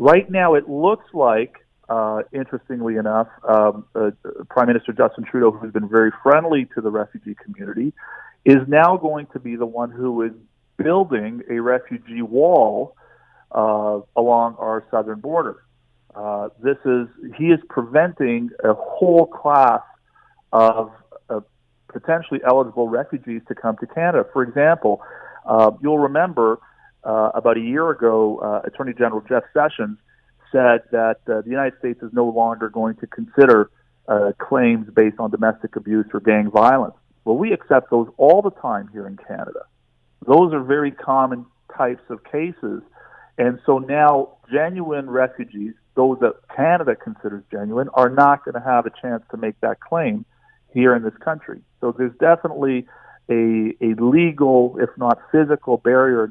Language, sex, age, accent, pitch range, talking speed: English, male, 40-59, American, 110-145 Hz, 155 wpm